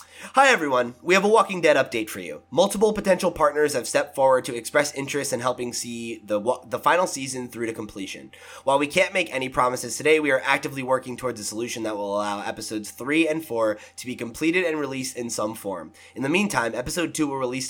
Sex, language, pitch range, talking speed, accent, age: male, English, 115-150 Hz, 220 wpm, American, 20-39